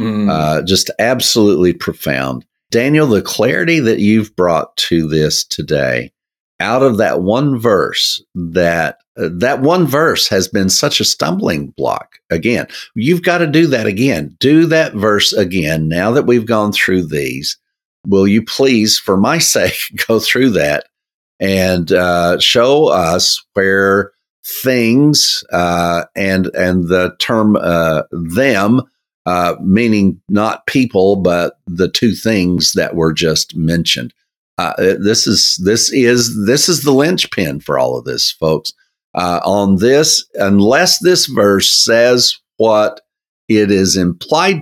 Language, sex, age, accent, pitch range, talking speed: English, male, 50-69, American, 90-125 Hz, 140 wpm